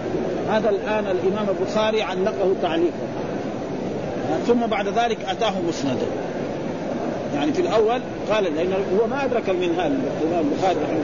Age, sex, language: 50-69, male, Arabic